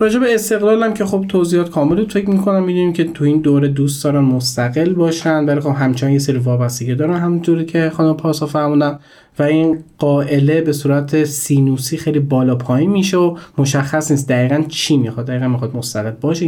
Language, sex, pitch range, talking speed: Persian, male, 130-170 Hz, 175 wpm